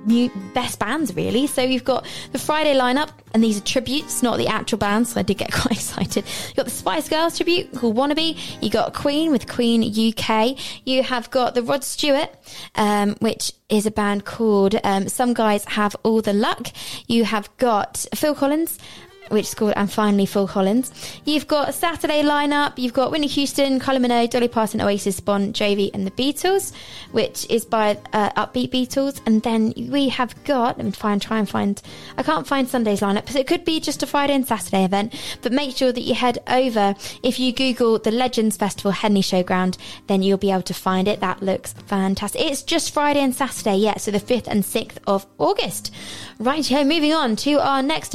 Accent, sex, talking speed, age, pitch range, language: British, female, 205 wpm, 20-39, 210-275 Hz, English